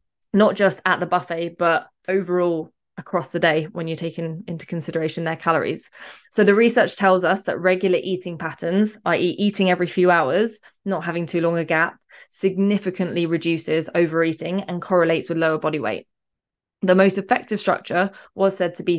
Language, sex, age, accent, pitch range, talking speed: English, female, 20-39, British, 165-195 Hz, 170 wpm